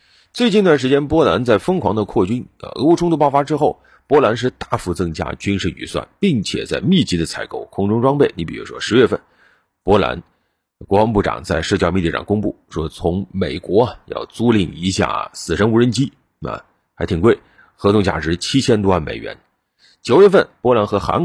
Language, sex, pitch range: Chinese, male, 85-130 Hz